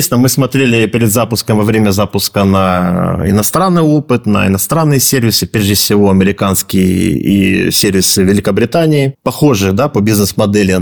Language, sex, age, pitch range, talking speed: Russian, male, 30-49, 100-135 Hz, 135 wpm